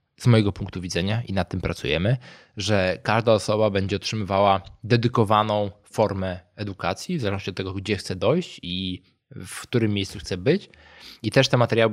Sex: male